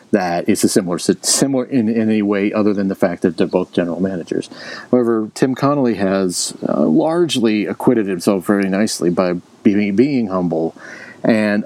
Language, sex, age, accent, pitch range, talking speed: English, male, 40-59, American, 95-110 Hz, 165 wpm